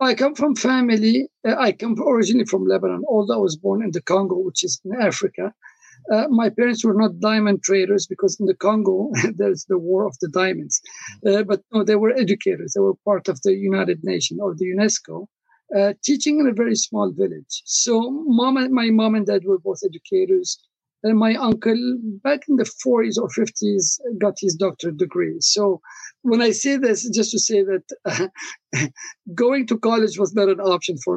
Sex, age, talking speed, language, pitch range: male, 50-69, 195 wpm, English, 195-235 Hz